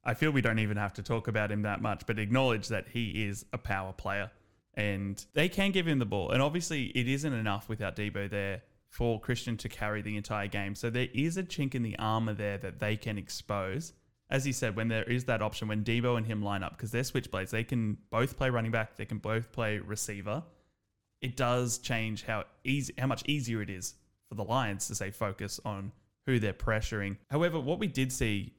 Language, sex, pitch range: English, male, 100-130 Hz